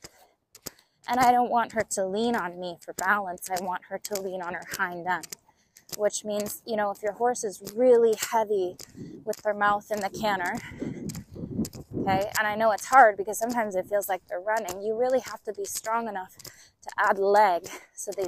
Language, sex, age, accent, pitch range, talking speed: English, female, 20-39, American, 190-225 Hz, 200 wpm